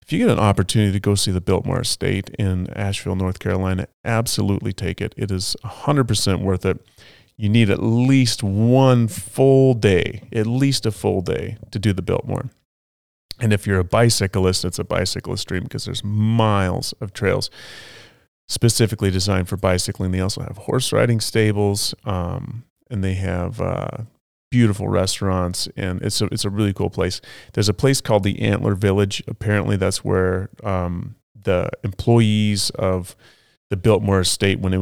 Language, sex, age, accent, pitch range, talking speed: English, male, 30-49, American, 95-115 Hz, 165 wpm